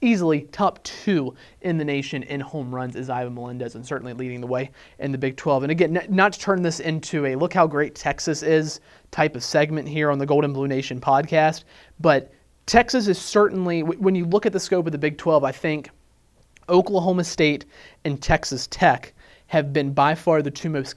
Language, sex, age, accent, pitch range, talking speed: English, male, 30-49, American, 140-175 Hz, 205 wpm